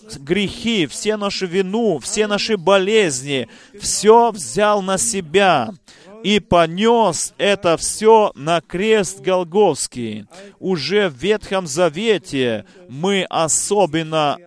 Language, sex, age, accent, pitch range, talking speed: Russian, male, 30-49, native, 170-205 Hz, 100 wpm